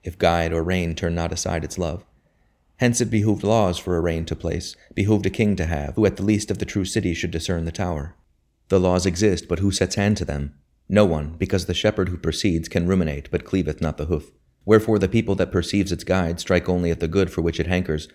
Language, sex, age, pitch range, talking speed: English, male, 30-49, 80-95 Hz, 245 wpm